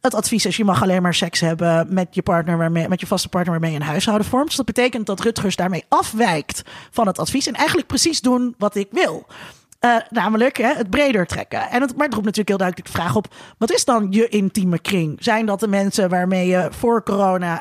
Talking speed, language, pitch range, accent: 240 wpm, Dutch, 190-270 Hz, Dutch